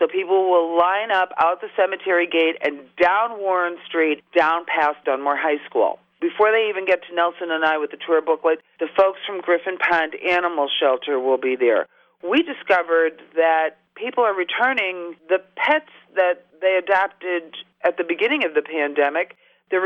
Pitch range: 165-195 Hz